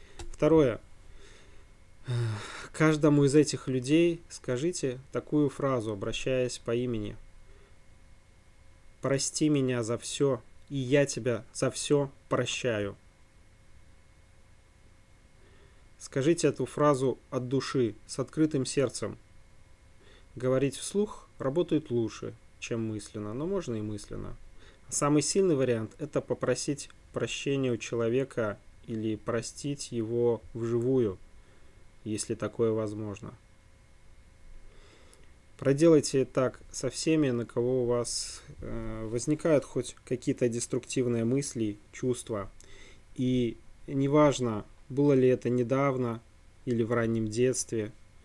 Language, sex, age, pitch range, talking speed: Russian, male, 20-39, 100-130 Hz, 100 wpm